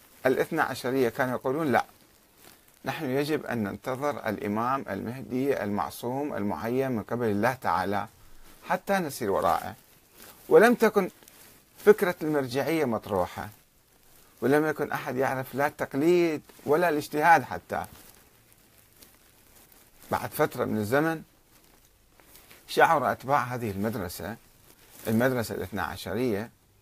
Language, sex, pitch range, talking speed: Arabic, male, 115-170 Hz, 100 wpm